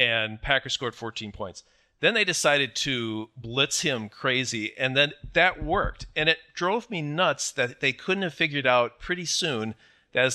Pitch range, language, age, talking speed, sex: 120-160 Hz, English, 40-59, 180 wpm, male